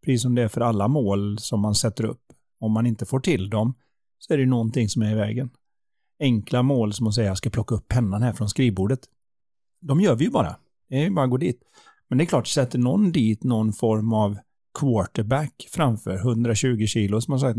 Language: Swedish